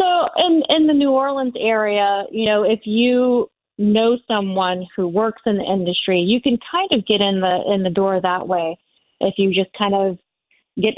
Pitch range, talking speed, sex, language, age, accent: 185-215 Hz, 195 wpm, female, English, 30-49, American